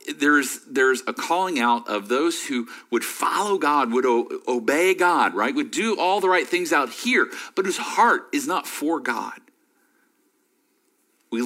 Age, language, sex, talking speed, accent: 40-59, English, male, 175 wpm, American